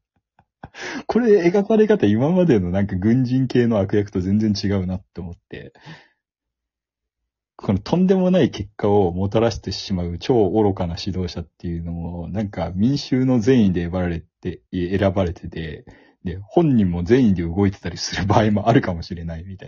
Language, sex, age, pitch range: Japanese, male, 40-59, 85-110 Hz